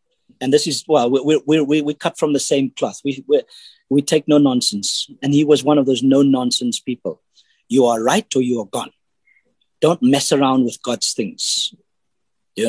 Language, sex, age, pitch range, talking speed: English, male, 50-69, 130-165 Hz, 180 wpm